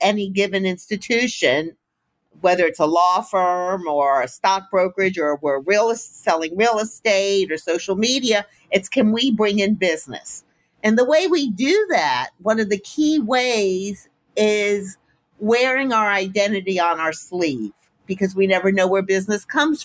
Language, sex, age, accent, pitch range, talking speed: English, female, 50-69, American, 185-230 Hz, 160 wpm